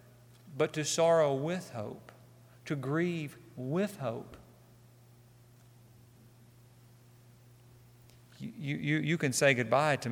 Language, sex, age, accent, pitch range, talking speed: English, male, 40-59, American, 120-170 Hz, 95 wpm